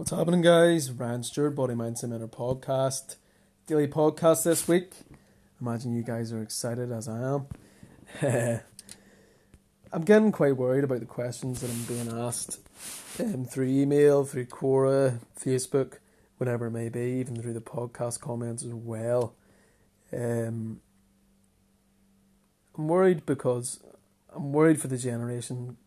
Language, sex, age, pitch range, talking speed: English, male, 30-49, 115-135 Hz, 135 wpm